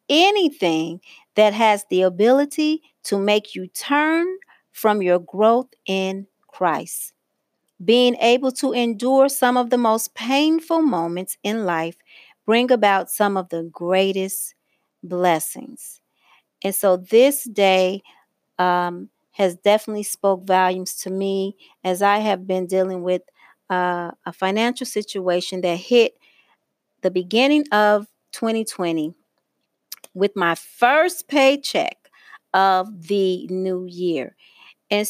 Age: 40-59